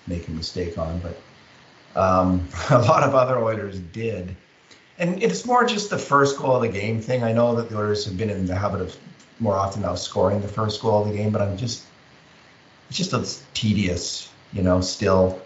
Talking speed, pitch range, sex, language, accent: 215 wpm, 90-120 Hz, male, English, American